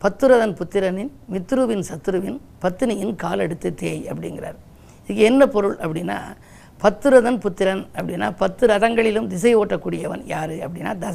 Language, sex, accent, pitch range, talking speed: Tamil, female, native, 195-240 Hz, 115 wpm